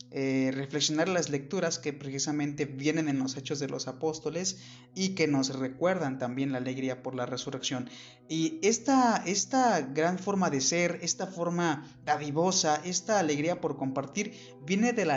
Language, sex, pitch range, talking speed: Spanish, male, 135-170 Hz, 160 wpm